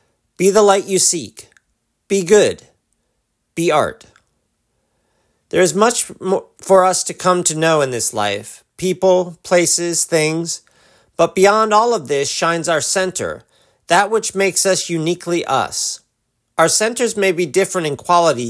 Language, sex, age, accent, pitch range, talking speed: English, male, 40-59, American, 155-195 Hz, 150 wpm